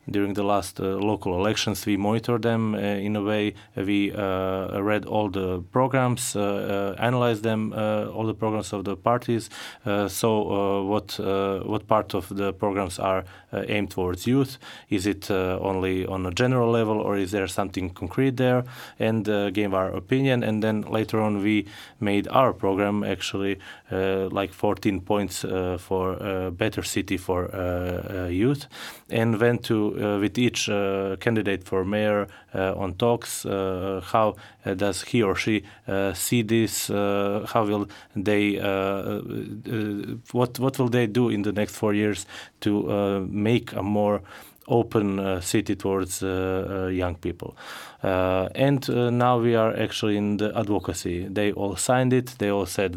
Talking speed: 175 wpm